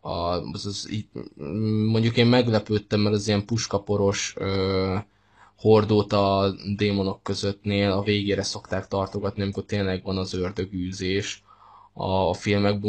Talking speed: 130 wpm